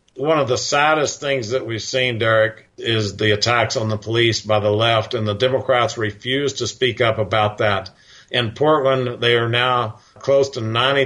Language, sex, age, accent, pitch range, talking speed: English, male, 50-69, American, 115-130 Hz, 190 wpm